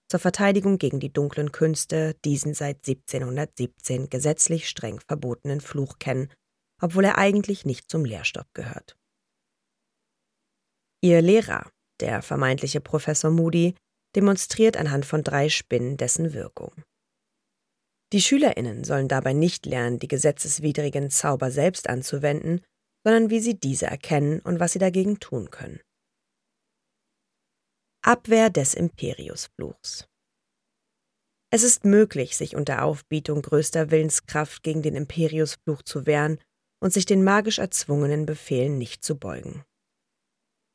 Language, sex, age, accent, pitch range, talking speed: German, female, 30-49, German, 145-190 Hz, 120 wpm